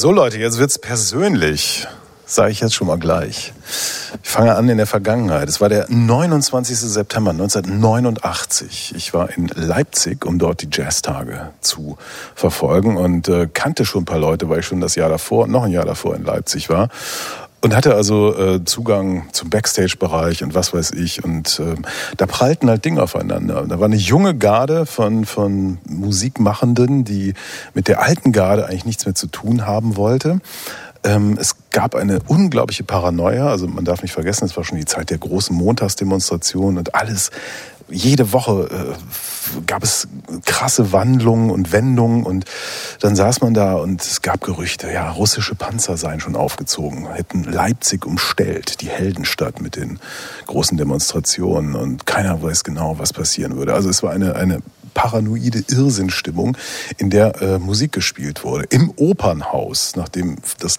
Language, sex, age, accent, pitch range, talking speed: German, male, 40-59, German, 90-115 Hz, 165 wpm